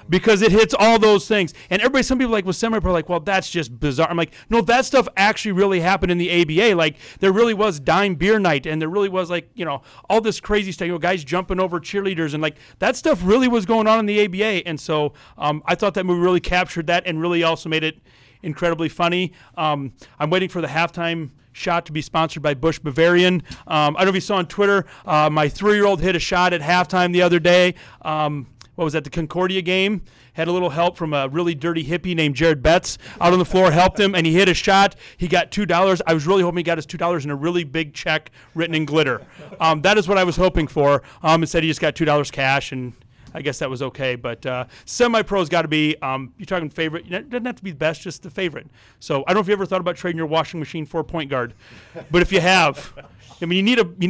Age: 40-59